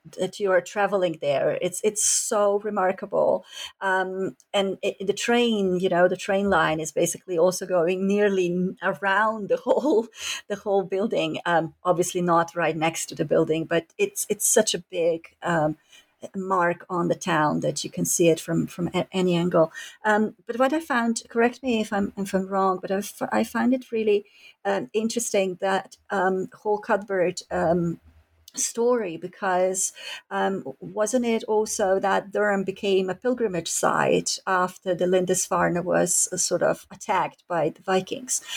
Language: English